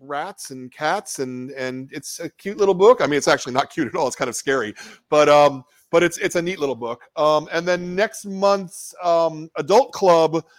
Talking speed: 220 wpm